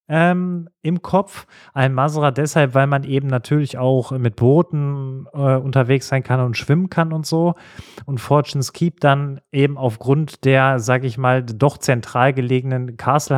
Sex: male